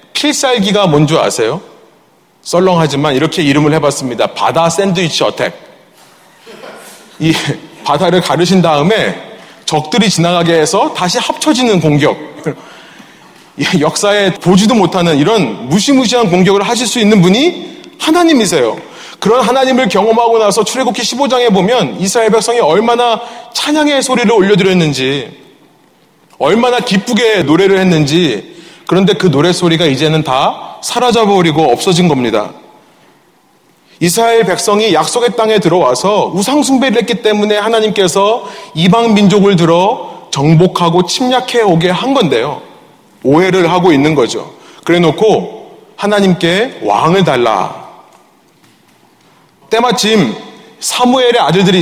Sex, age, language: male, 30-49, Korean